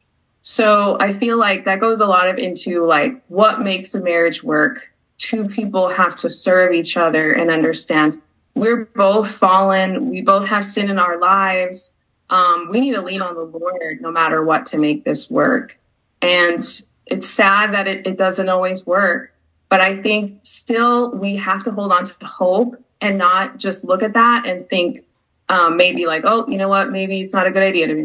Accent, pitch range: American, 180-235 Hz